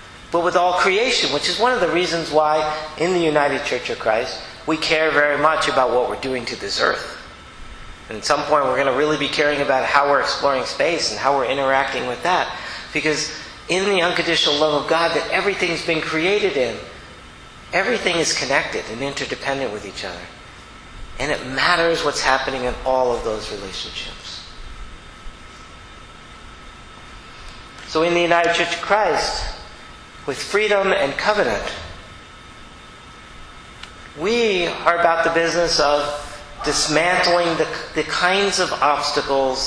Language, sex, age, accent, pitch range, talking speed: English, male, 50-69, American, 125-170 Hz, 155 wpm